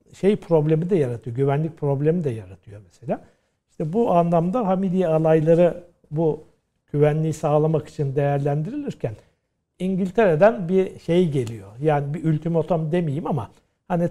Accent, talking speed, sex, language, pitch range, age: native, 125 wpm, male, Turkish, 145-180 Hz, 60-79